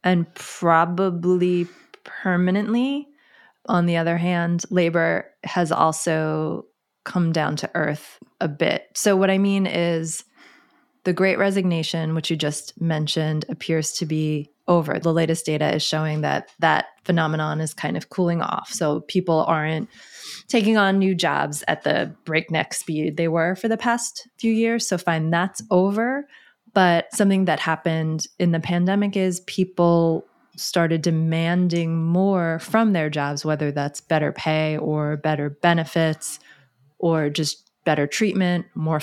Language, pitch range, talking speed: English, 155-185 Hz, 145 wpm